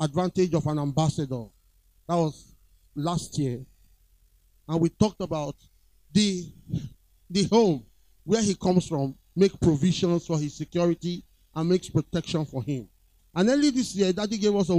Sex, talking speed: male, 150 wpm